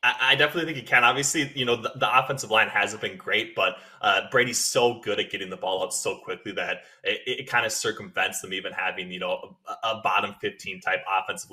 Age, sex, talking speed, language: 20-39, male, 230 wpm, English